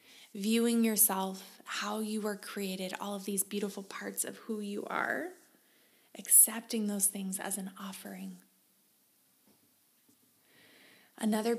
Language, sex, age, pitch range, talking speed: English, female, 20-39, 190-220 Hz, 115 wpm